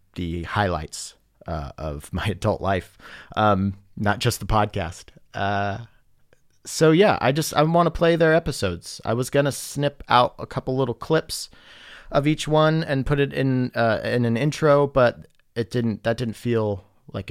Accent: American